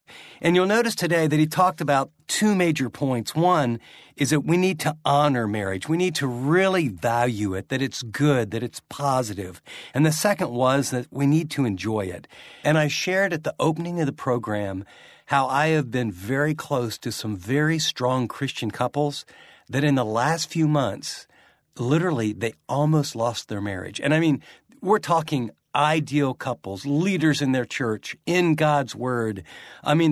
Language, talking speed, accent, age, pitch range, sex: English, 180 wpm, American, 50-69, 120-155 Hz, male